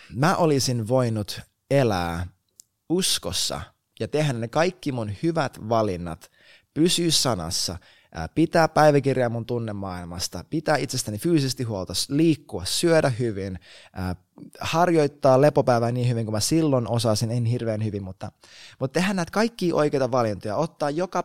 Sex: male